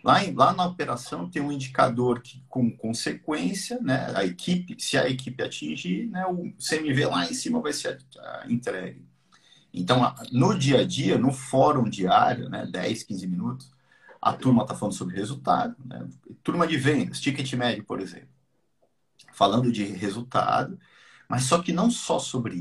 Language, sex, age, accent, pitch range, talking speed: Portuguese, male, 50-69, Brazilian, 120-180 Hz, 170 wpm